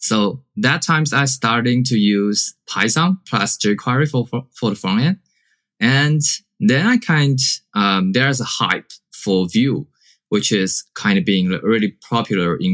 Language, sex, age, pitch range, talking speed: English, male, 20-39, 105-155 Hz, 160 wpm